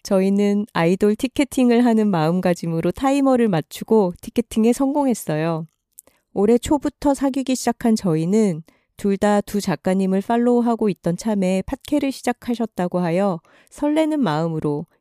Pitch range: 175-240 Hz